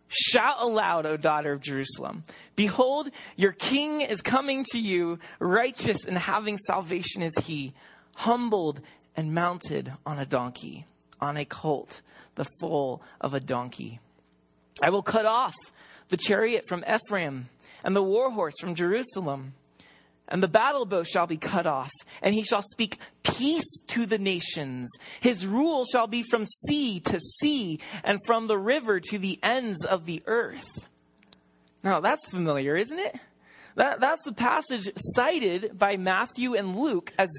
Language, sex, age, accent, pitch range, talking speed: English, male, 30-49, American, 140-230 Hz, 155 wpm